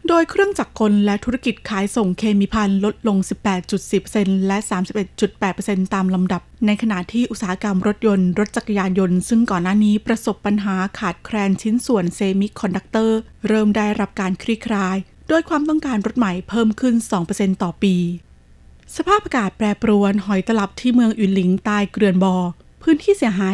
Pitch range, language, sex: 195-225 Hz, Thai, female